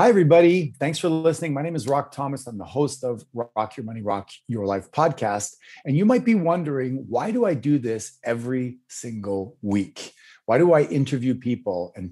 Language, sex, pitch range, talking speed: English, male, 105-145 Hz, 200 wpm